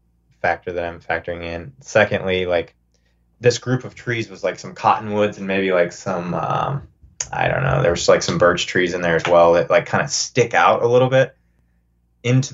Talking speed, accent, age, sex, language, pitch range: 200 wpm, American, 20-39, male, English, 85-110 Hz